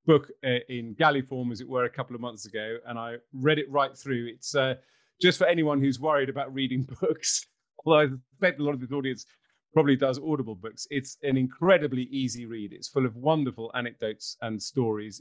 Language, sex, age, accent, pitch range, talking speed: English, male, 40-59, British, 120-150 Hz, 210 wpm